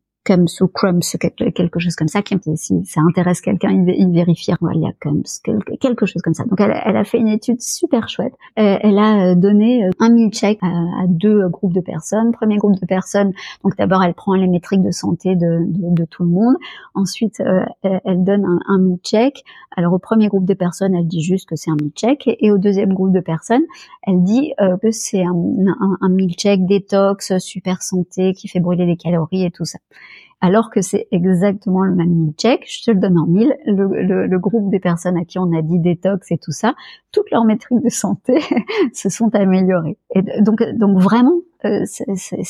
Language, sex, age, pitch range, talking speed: French, male, 40-59, 180-225 Hz, 220 wpm